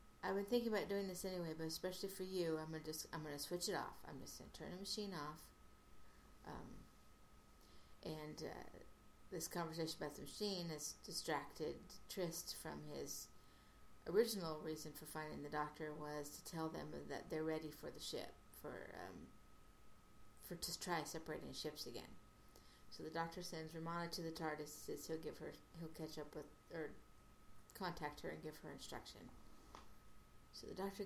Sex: female